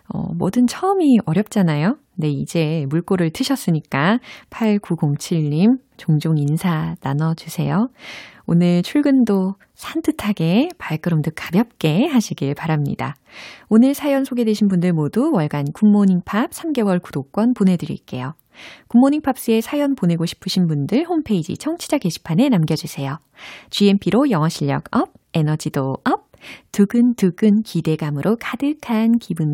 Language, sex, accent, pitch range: Korean, female, native, 165-250 Hz